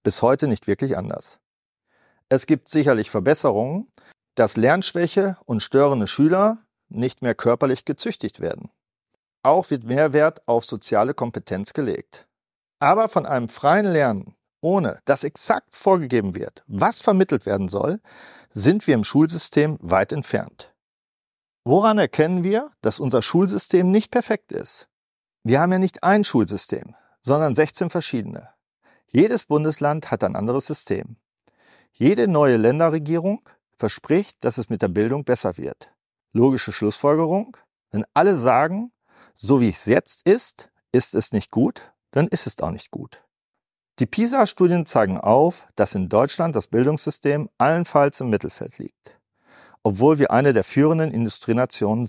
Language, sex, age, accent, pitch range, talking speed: German, male, 50-69, German, 120-180 Hz, 140 wpm